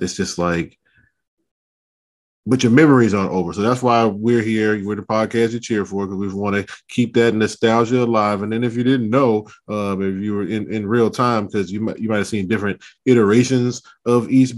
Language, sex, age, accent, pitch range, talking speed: English, male, 20-39, American, 100-120 Hz, 210 wpm